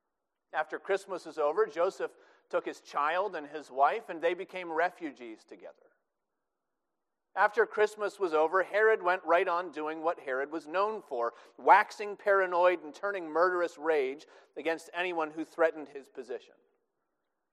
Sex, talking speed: male, 145 wpm